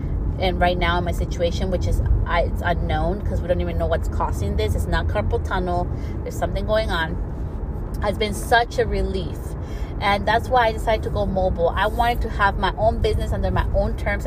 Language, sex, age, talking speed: English, female, 30-49, 210 wpm